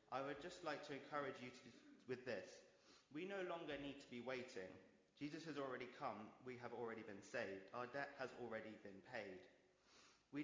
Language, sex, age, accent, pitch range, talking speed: English, male, 30-49, British, 115-145 Hz, 190 wpm